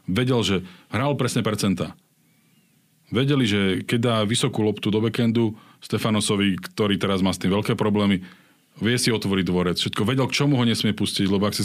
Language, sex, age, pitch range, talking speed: Slovak, male, 40-59, 95-115 Hz, 180 wpm